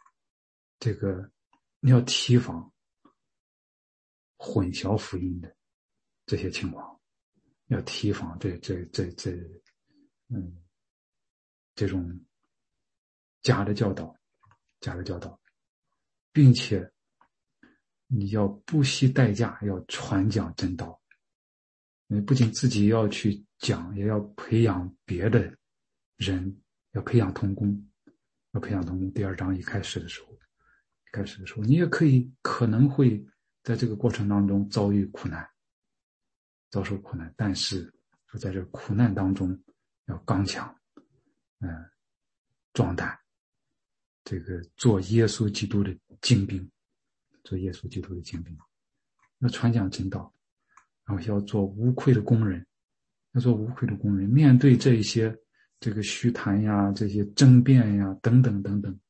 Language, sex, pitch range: English, male, 95-120 Hz